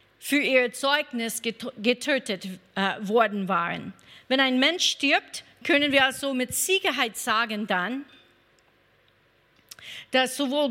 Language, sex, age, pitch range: German, female, 50-69, 230-285 Hz